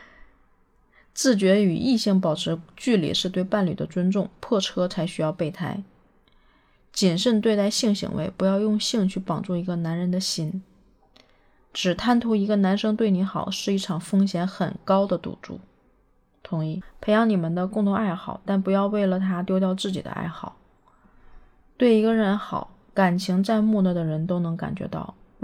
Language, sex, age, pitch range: Chinese, female, 20-39, 175-205 Hz